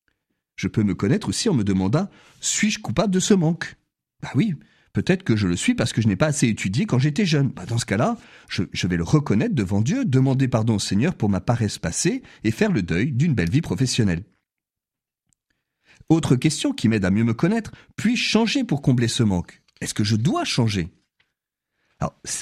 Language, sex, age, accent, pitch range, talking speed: French, male, 40-59, French, 105-165 Hz, 220 wpm